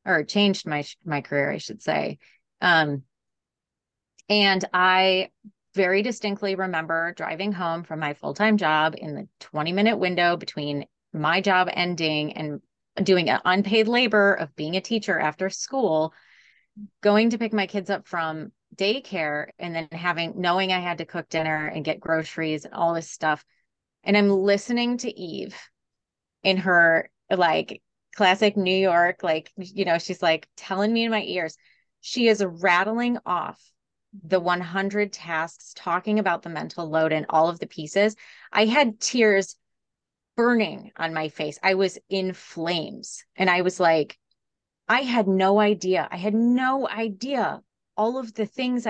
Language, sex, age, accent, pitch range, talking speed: English, female, 30-49, American, 165-210 Hz, 155 wpm